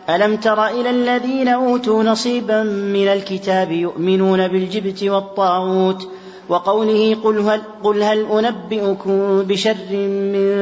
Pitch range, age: 190-215 Hz, 40-59